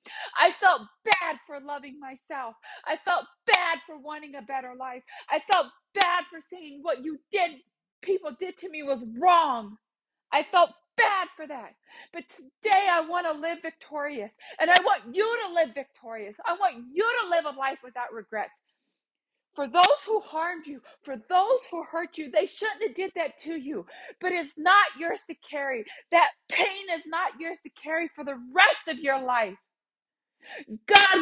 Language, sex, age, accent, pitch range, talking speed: English, female, 40-59, American, 270-360 Hz, 180 wpm